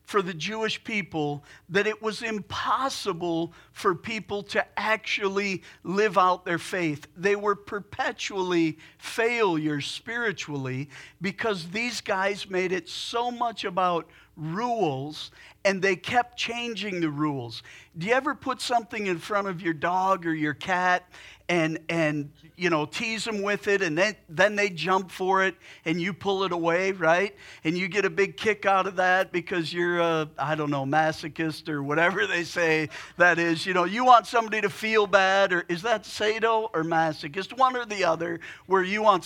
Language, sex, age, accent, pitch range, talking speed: English, male, 50-69, American, 160-210 Hz, 175 wpm